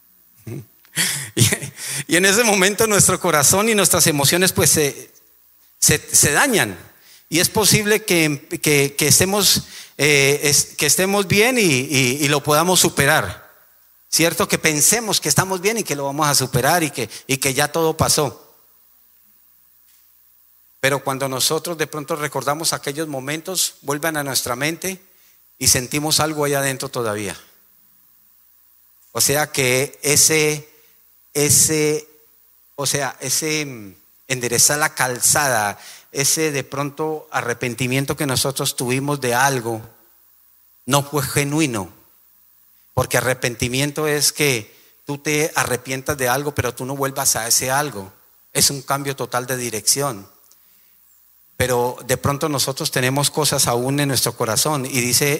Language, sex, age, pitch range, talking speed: English, male, 40-59, 130-155 Hz, 125 wpm